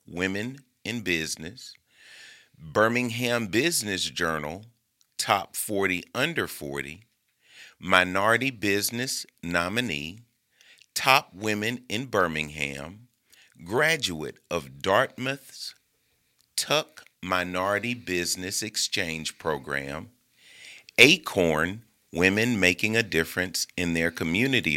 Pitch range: 80-115 Hz